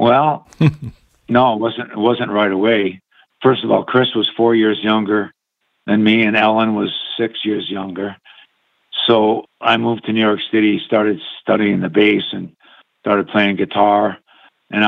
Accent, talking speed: American, 160 wpm